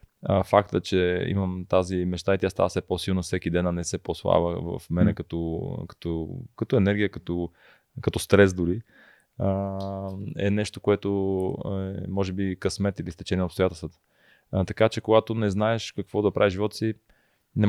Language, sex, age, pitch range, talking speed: Bulgarian, male, 20-39, 95-105 Hz, 165 wpm